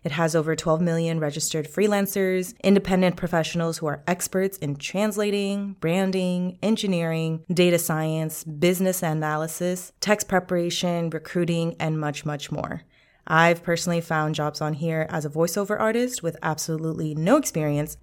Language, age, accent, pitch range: English, 20-39, American, 155-190 Hz